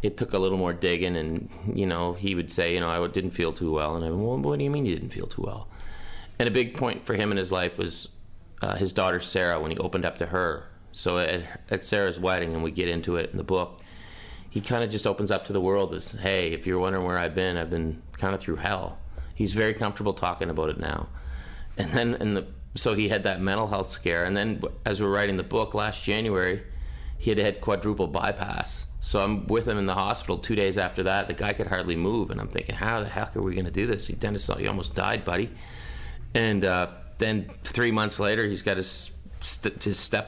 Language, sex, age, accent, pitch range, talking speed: English, male, 30-49, American, 90-105 Hz, 245 wpm